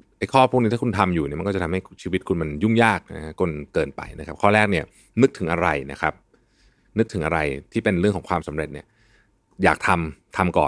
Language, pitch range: Thai, 80-105 Hz